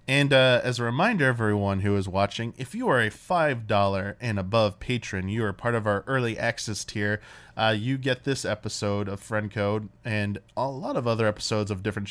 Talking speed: 205 wpm